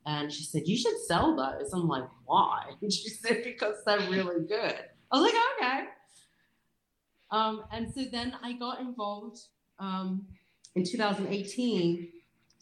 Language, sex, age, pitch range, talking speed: English, female, 30-49, 155-195 Hz, 145 wpm